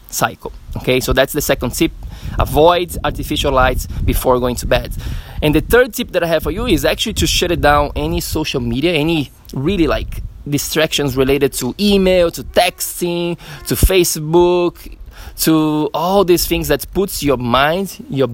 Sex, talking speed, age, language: male, 165 wpm, 20-39, English